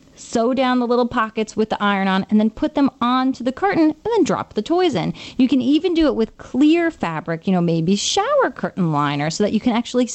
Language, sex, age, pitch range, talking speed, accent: English, female, 30-49, 190-265 Hz, 240 wpm, American